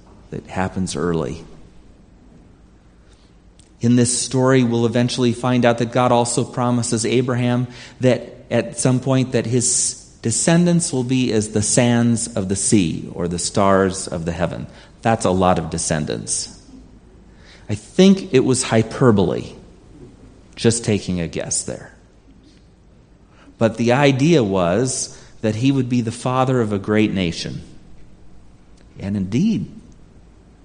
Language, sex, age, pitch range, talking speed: English, male, 40-59, 90-120 Hz, 130 wpm